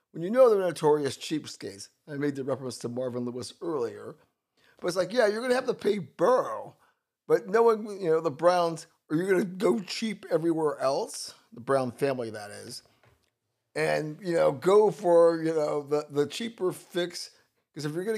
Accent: American